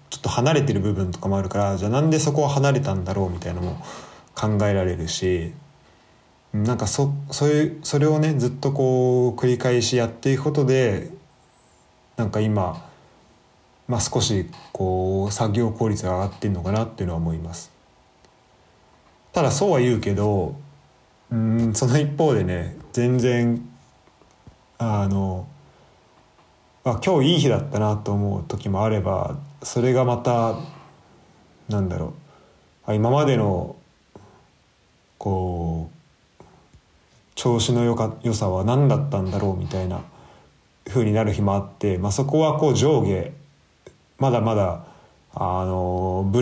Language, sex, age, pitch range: Japanese, male, 20-39, 100-130 Hz